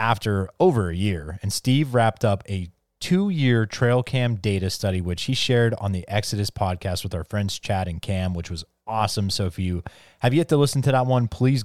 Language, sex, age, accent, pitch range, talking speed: English, male, 30-49, American, 95-115 Hz, 210 wpm